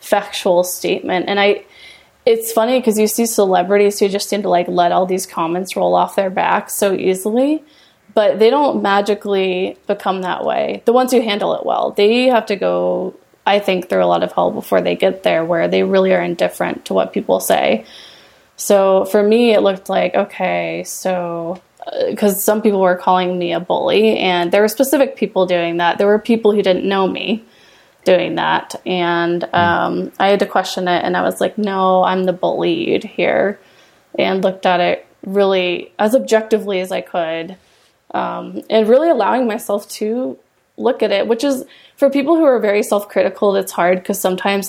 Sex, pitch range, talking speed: female, 180-215 Hz, 190 wpm